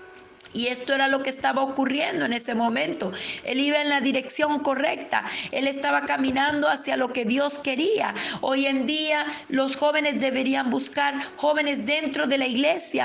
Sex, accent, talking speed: female, Mexican, 165 wpm